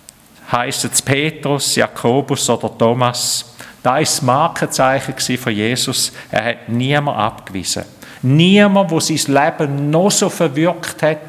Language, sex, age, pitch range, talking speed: German, male, 50-69, 125-160 Hz, 130 wpm